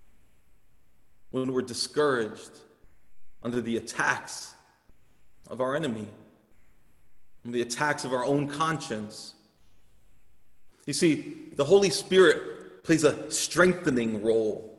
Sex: male